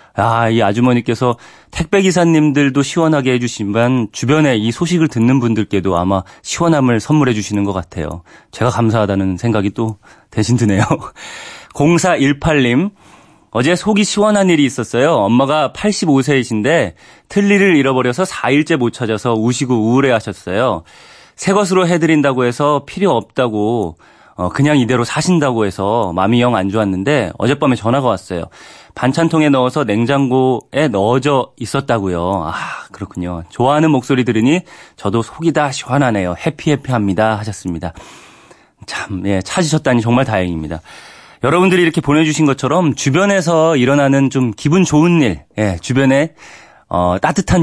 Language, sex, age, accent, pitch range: Korean, male, 30-49, native, 110-150 Hz